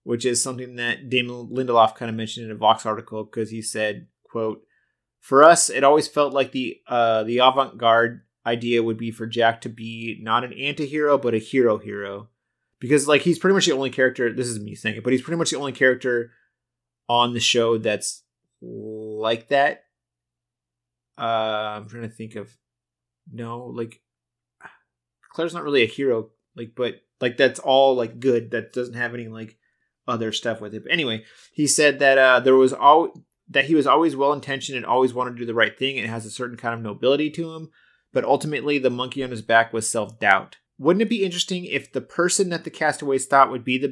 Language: English